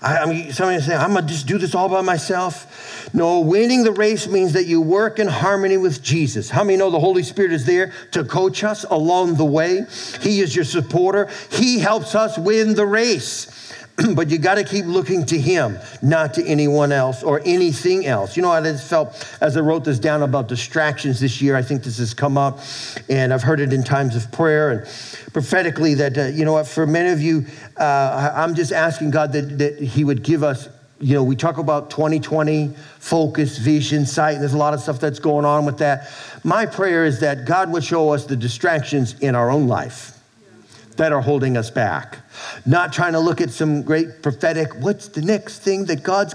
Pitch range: 135-180 Hz